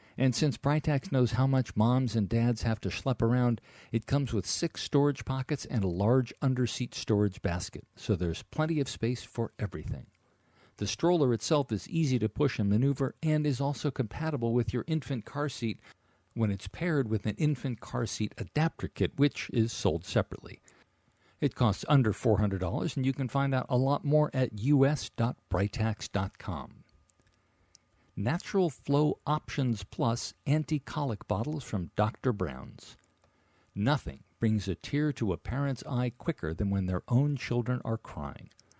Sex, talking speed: male, 160 wpm